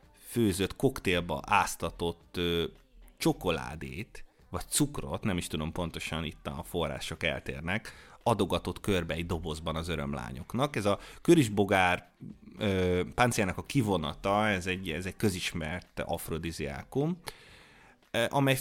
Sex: male